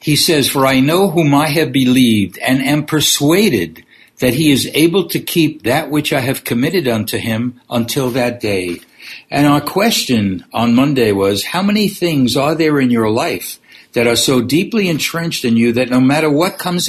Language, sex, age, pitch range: English, male, 60-79, 115-150 Hz